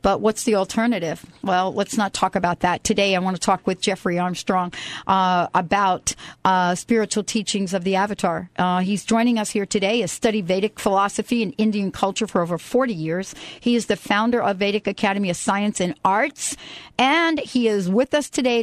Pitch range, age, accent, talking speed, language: 195-245 Hz, 50-69, American, 195 wpm, English